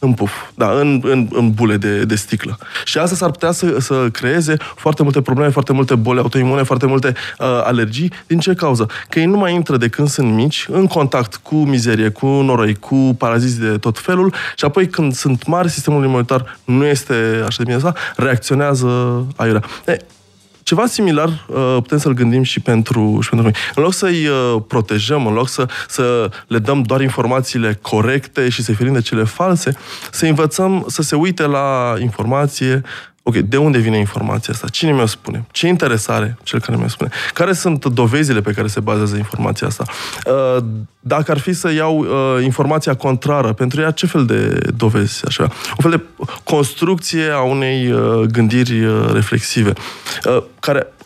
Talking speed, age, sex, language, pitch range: 175 wpm, 20-39, male, Romanian, 115-150 Hz